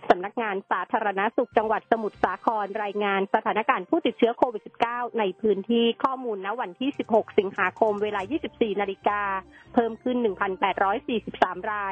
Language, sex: Thai, female